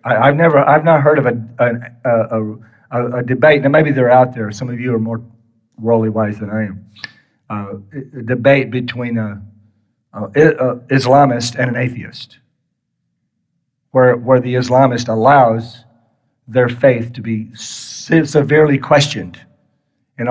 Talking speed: 140 wpm